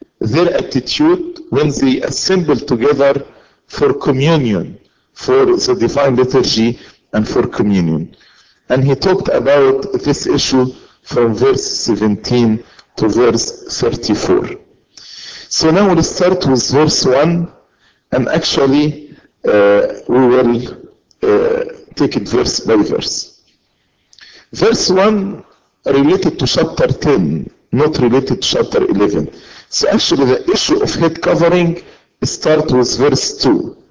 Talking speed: 120 wpm